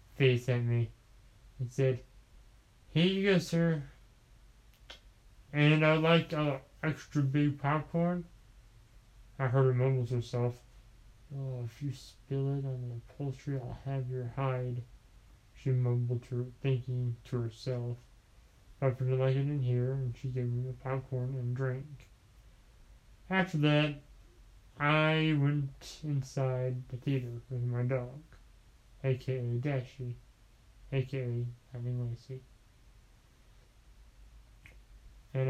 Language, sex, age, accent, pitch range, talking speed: English, male, 20-39, American, 120-135 Hz, 120 wpm